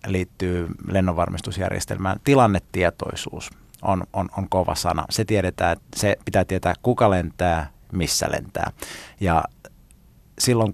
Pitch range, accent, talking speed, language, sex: 90-110 Hz, native, 105 wpm, Finnish, male